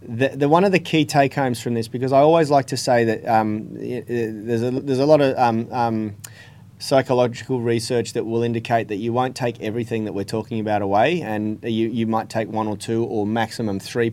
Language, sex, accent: English, male, Australian